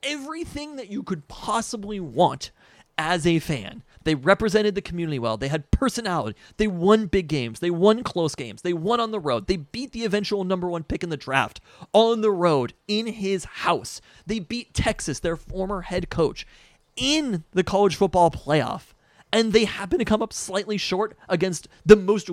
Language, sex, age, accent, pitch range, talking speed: English, male, 30-49, American, 140-205 Hz, 185 wpm